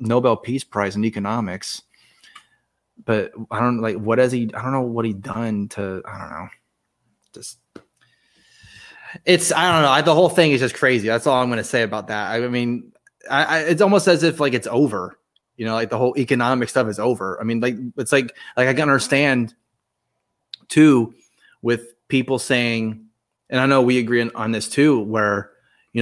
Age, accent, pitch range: 20-39, American, 105-130 Hz